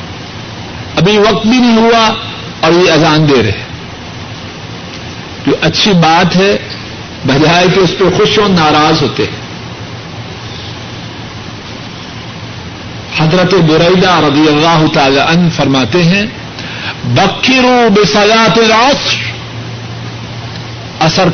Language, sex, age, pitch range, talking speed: Urdu, male, 50-69, 145-195 Hz, 100 wpm